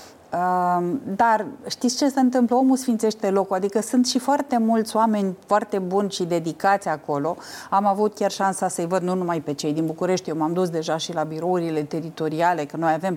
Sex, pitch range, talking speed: female, 170-220 Hz, 190 wpm